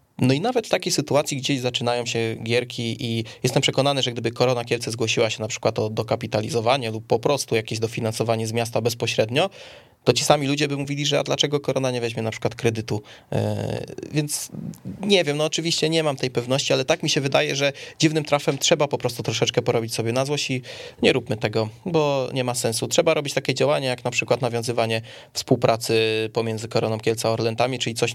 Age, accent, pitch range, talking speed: 20-39, native, 115-140 Hz, 200 wpm